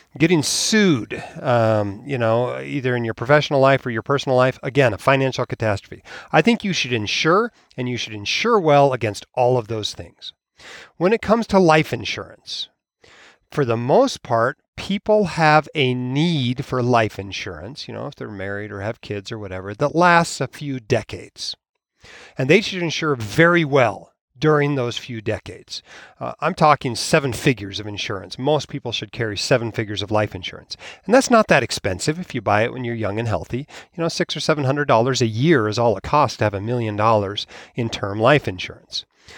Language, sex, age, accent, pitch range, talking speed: English, male, 40-59, American, 110-160 Hz, 195 wpm